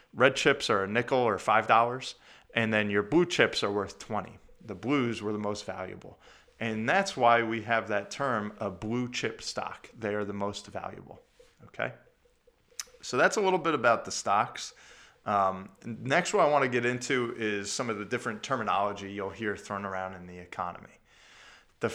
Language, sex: English, male